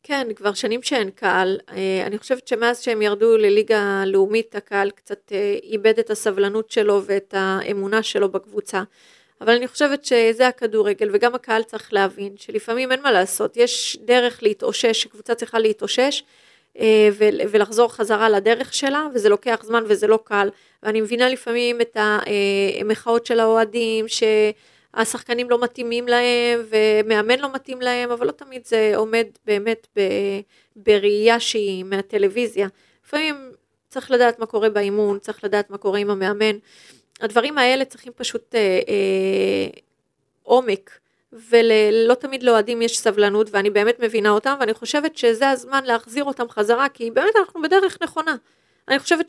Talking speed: 145 wpm